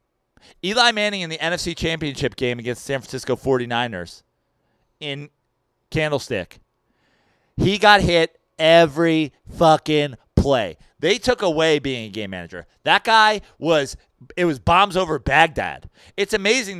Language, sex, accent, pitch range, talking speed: English, male, American, 140-210 Hz, 130 wpm